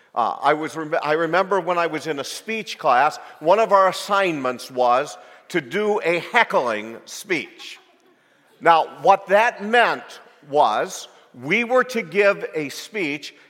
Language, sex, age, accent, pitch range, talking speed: English, male, 50-69, American, 170-215 Hz, 150 wpm